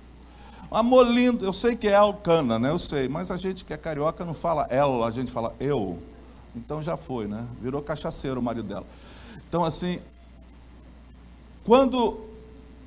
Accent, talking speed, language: Brazilian, 165 wpm, Portuguese